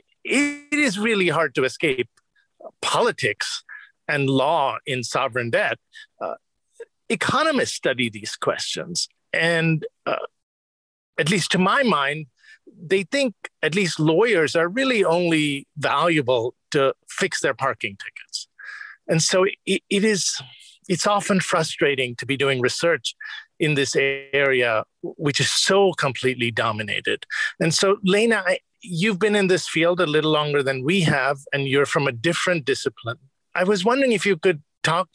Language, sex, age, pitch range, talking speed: English, male, 50-69, 145-215 Hz, 145 wpm